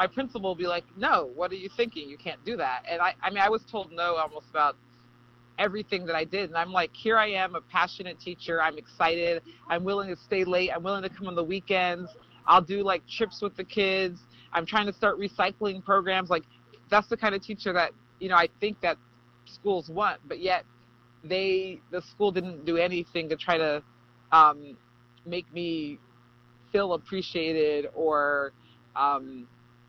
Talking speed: 195 wpm